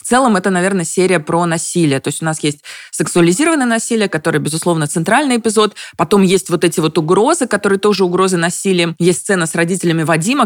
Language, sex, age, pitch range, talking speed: Russian, female, 20-39, 170-195 Hz, 190 wpm